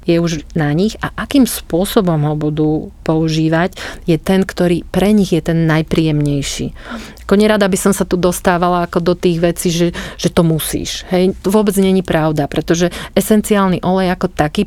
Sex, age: female, 40-59